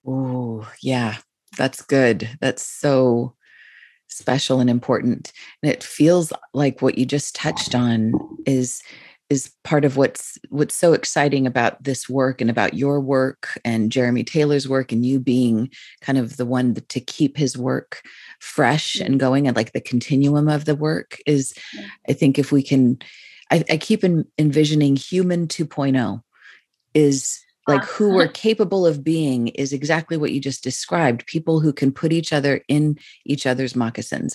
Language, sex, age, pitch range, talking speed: English, female, 30-49, 125-150 Hz, 160 wpm